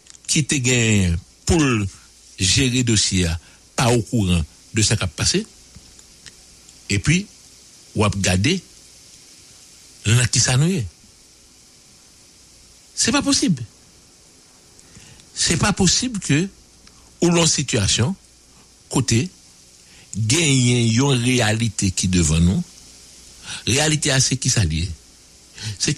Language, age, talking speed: English, 60-79, 115 wpm